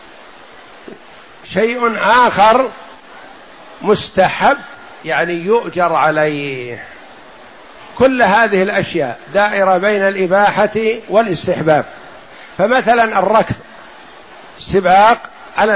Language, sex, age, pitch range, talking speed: Arabic, male, 60-79, 180-215 Hz, 65 wpm